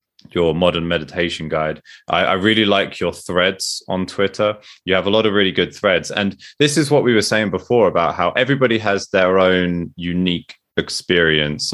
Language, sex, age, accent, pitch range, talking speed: English, male, 20-39, British, 80-105 Hz, 185 wpm